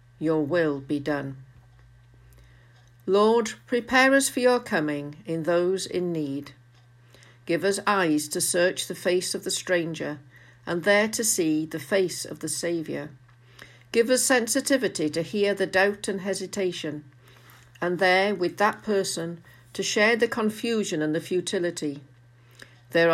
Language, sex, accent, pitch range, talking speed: English, female, British, 125-190 Hz, 145 wpm